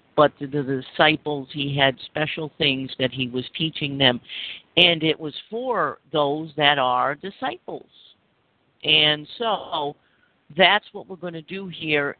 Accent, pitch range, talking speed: American, 140-180 Hz, 145 wpm